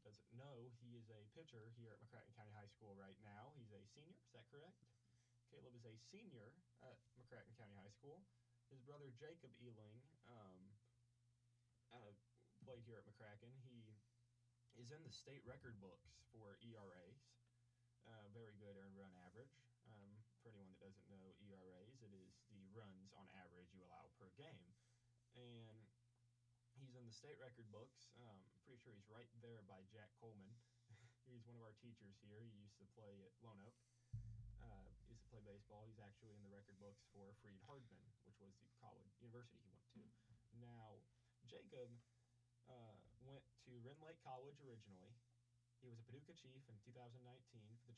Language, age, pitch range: English, 20-39, 105-120 Hz